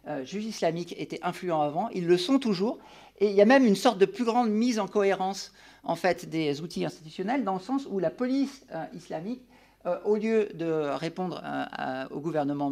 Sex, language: male, French